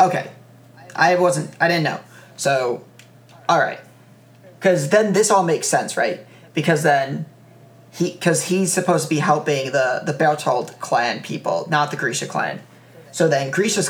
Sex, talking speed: male, 155 wpm